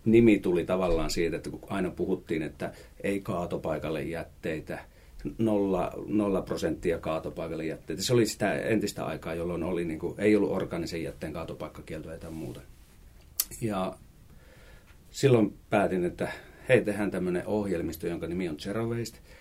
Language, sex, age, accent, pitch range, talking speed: Finnish, male, 40-59, native, 80-105 Hz, 140 wpm